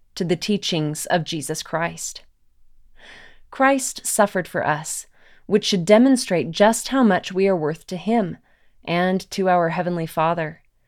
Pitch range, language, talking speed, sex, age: 165-205 Hz, English, 145 wpm, female, 20-39